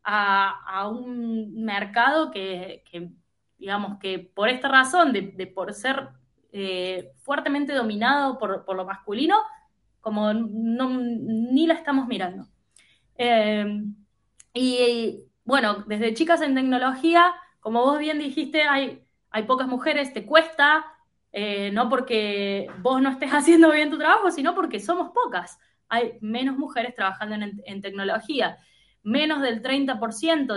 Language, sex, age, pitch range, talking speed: Spanish, female, 20-39, 200-275 Hz, 135 wpm